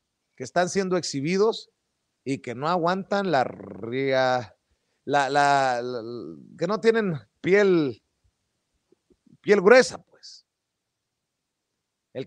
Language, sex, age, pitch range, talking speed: Spanish, male, 40-59, 140-210 Hz, 105 wpm